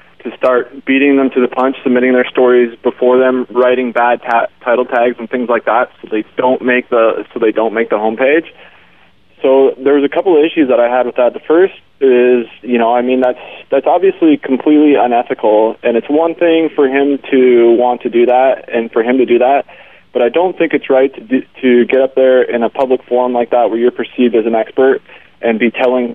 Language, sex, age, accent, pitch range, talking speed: English, male, 20-39, American, 115-130 Hz, 225 wpm